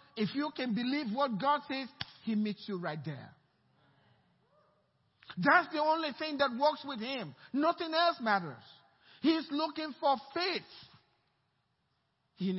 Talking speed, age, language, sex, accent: 135 wpm, 50-69, English, male, Nigerian